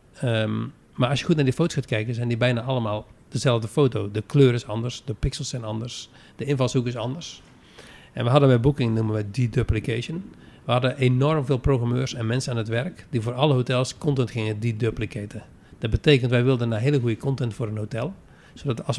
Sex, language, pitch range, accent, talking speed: male, Dutch, 115-135 Hz, Dutch, 210 wpm